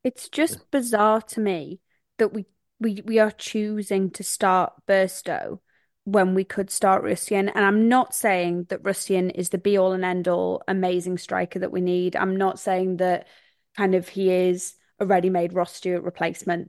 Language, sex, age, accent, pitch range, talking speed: English, female, 20-39, British, 185-215 Hz, 165 wpm